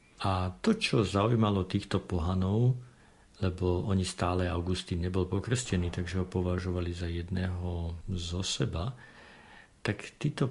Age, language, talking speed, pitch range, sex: 50-69, Slovak, 120 wpm, 90-110 Hz, male